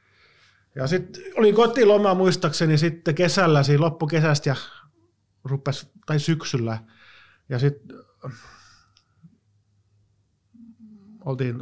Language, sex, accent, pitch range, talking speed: English, male, Finnish, 105-135 Hz, 90 wpm